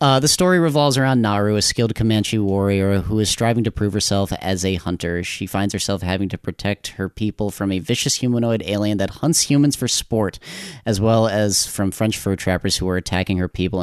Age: 30-49